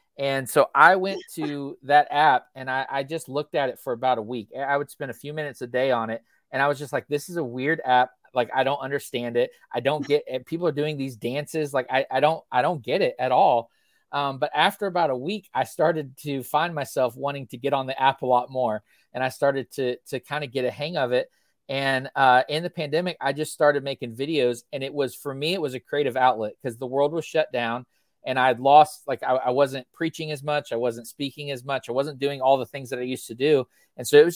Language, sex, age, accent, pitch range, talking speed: English, male, 30-49, American, 125-150 Hz, 260 wpm